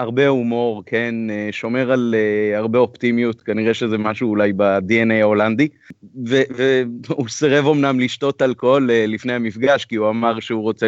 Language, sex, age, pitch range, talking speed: Hebrew, male, 30-49, 105-125 Hz, 140 wpm